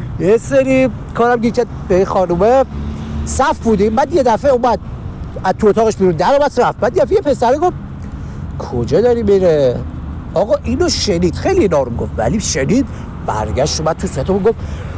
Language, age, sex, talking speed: Persian, 50-69, male, 160 wpm